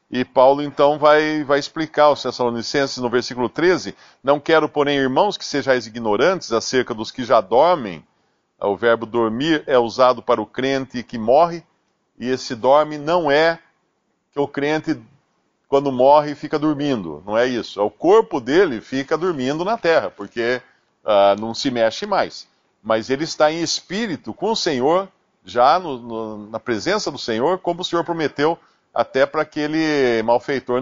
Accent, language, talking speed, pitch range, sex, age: Brazilian, Portuguese, 165 wpm, 130-170 Hz, male, 50-69